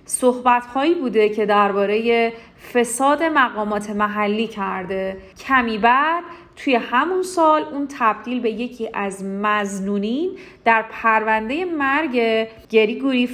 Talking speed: 105 wpm